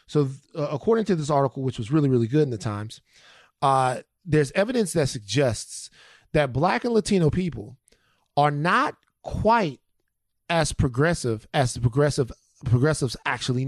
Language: English